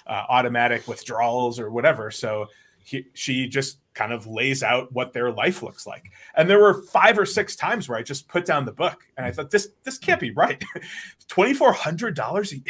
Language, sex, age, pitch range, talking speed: English, male, 30-49, 120-165 Hz, 195 wpm